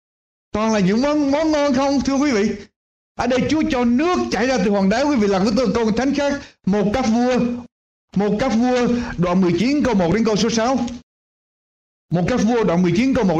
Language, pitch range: Vietnamese, 190-245 Hz